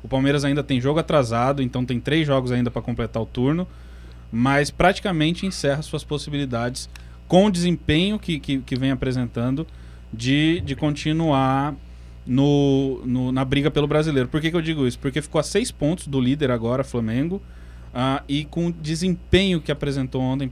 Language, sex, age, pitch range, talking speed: Portuguese, male, 20-39, 120-155 Hz, 175 wpm